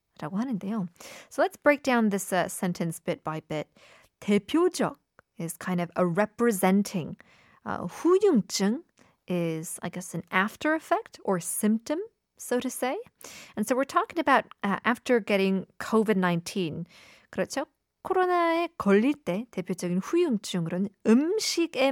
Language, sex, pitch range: Korean, female, 185-265 Hz